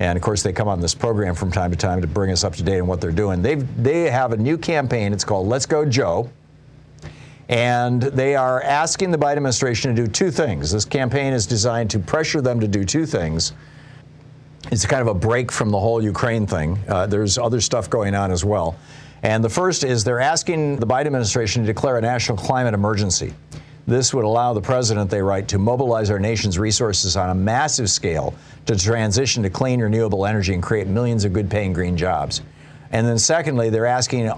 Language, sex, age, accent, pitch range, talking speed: English, male, 50-69, American, 100-130 Hz, 215 wpm